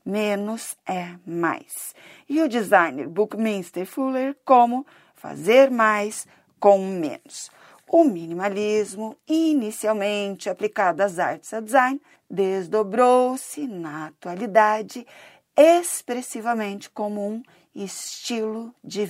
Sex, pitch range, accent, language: female, 200-255 Hz, Brazilian, Portuguese